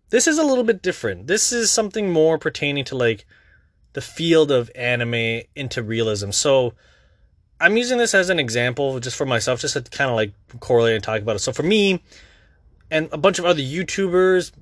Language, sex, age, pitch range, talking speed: English, male, 20-39, 120-175 Hz, 195 wpm